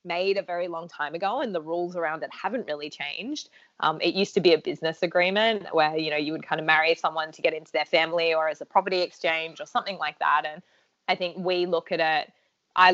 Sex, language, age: female, English, 20-39